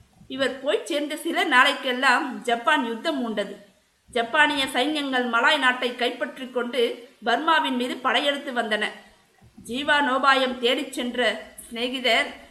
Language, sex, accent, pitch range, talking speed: Tamil, female, native, 230-280 Hz, 100 wpm